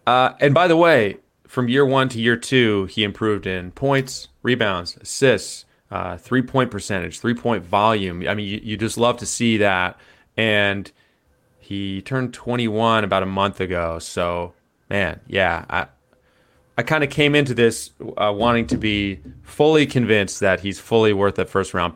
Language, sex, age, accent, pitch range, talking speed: English, male, 30-49, American, 95-125 Hz, 165 wpm